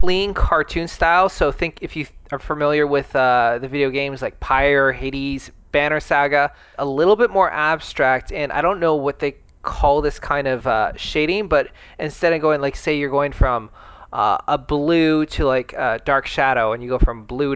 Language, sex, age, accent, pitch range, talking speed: English, male, 20-39, American, 135-155 Hz, 200 wpm